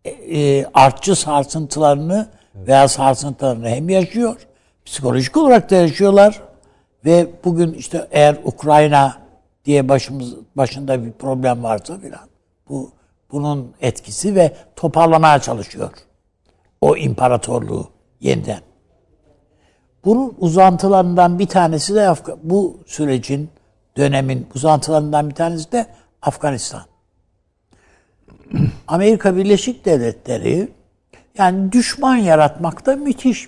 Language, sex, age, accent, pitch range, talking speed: Turkish, male, 60-79, native, 130-175 Hz, 95 wpm